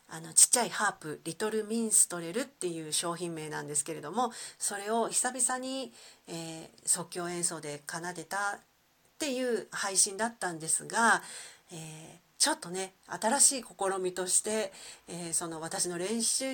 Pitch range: 170-225 Hz